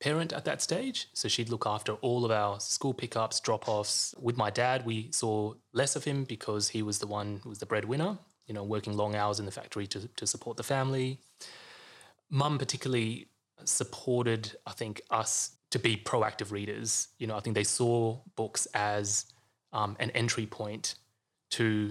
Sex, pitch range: male, 105-120 Hz